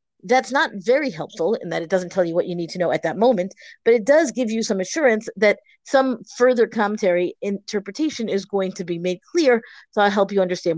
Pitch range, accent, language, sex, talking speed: 185-245 Hz, American, English, female, 230 wpm